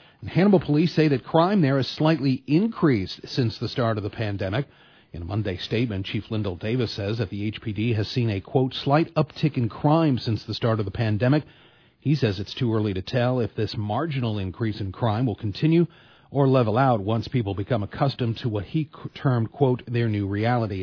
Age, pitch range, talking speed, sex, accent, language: 40-59, 110-135 Hz, 205 wpm, male, American, English